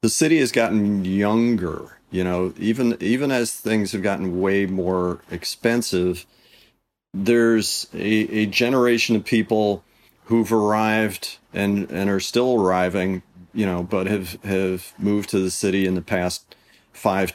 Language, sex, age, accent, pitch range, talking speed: English, male, 40-59, American, 90-115 Hz, 145 wpm